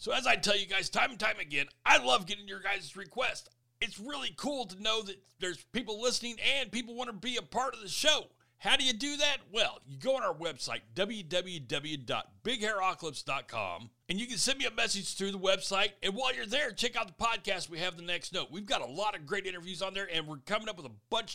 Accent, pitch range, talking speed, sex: American, 165-230 Hz, 240 wpm, male